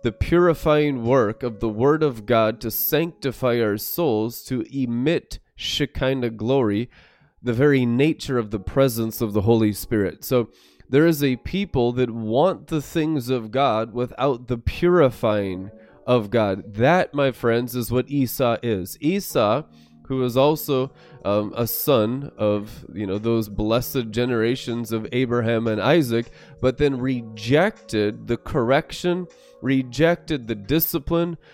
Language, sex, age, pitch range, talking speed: English, male, 20-39, 115-145 Hz, 145 wpm